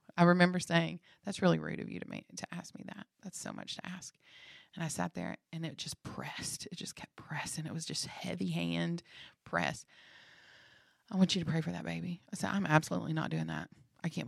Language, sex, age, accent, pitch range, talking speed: English, female, 30-49, American, 160-235 Hz, 225 wpm